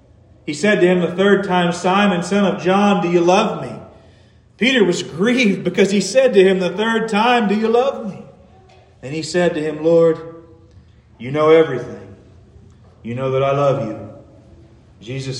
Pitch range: 140-225 Hz